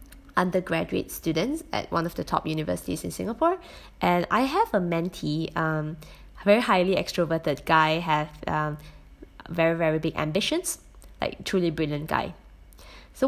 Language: English